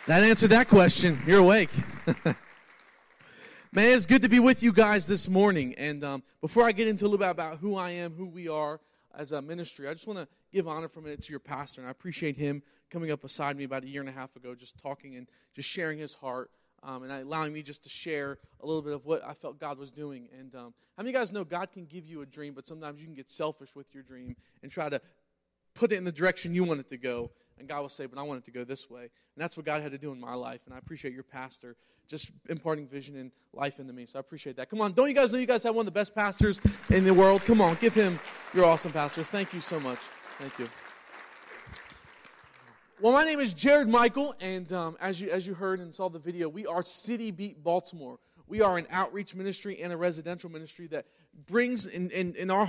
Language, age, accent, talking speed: English, 30-49, American, 260 wpm